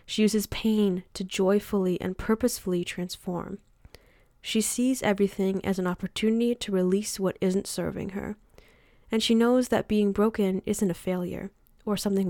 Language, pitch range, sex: English, 185-215 Hz, female